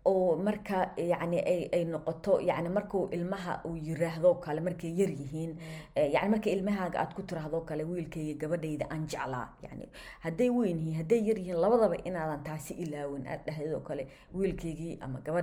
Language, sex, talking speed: English, female, 90 wpm